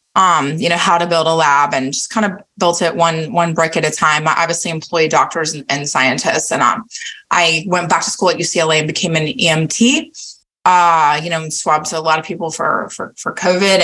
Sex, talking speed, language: female, 225 wpm, English